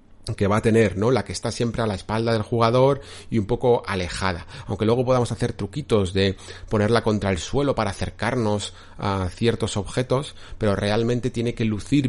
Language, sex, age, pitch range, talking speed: Spanish, male, 40-59, 95-120 Hz, 190 wpm